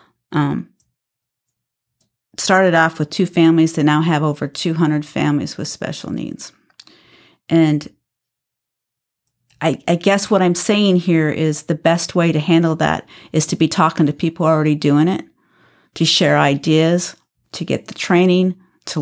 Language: English